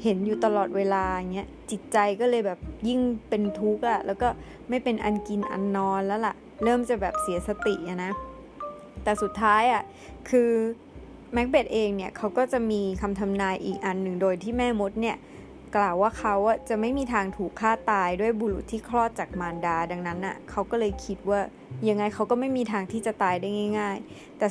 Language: Thai